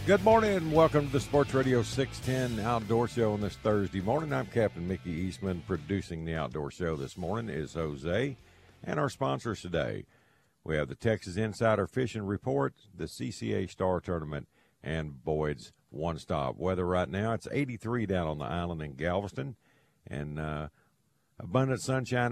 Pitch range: 75-100 Hz